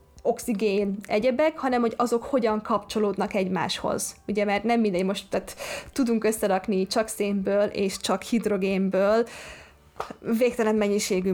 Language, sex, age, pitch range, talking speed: Hungarian, female, 20-39, 195-225 Hz, 120 wpm